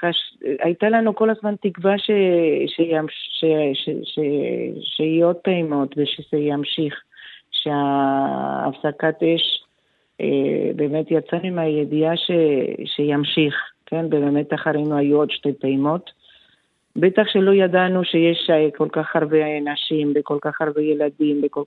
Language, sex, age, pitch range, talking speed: Hebrew, female, 50-69, 145-170 Hz, 100 wpm